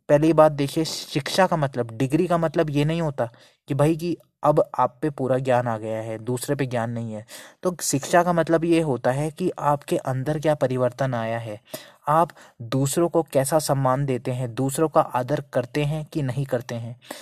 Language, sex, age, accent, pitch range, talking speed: Hindi, male, 20-39, native, 130-155 Hz, 200 wpm